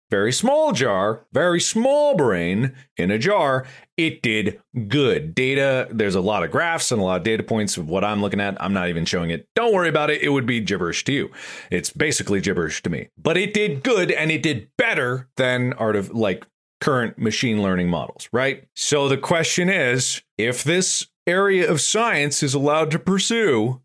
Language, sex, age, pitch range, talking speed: English, male, 40-59, 125-185 Hz, 200 wpm